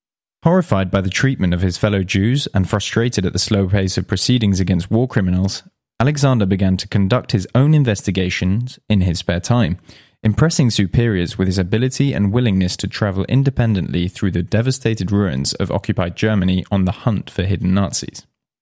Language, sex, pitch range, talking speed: English, male, 95-120 Hz, 170 wpm